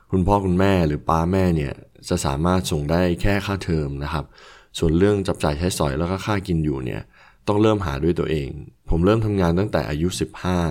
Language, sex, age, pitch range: Thai, male, 20-39, 80-100 Hz